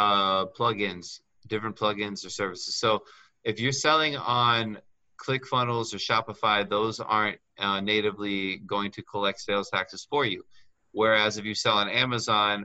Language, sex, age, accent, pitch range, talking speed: English, male, 30-49, American, 100-115 Hz, 145 wpm